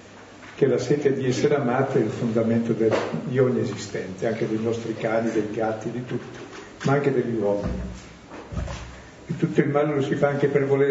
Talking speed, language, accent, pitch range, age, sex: 195 wpm, Italian, native, 120-150 Hz, 50-69, male